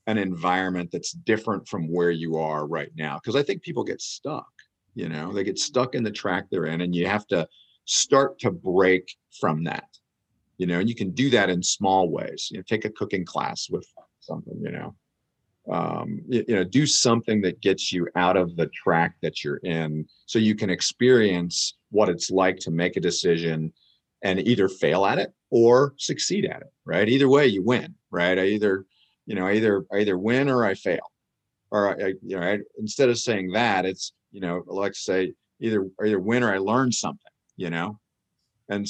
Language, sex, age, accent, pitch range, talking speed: English, male, 50-69, American, 90-110 Hz, 205 wpm